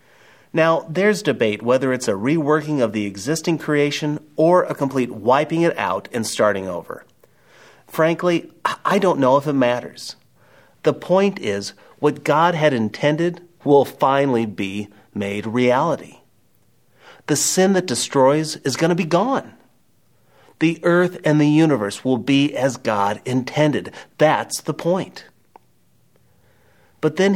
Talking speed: 140 wpm